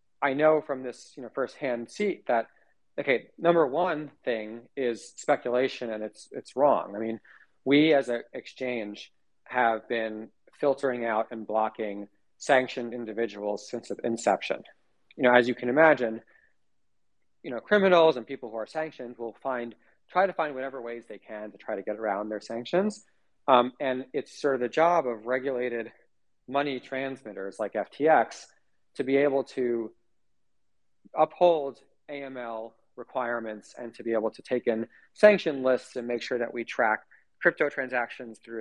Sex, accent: male, American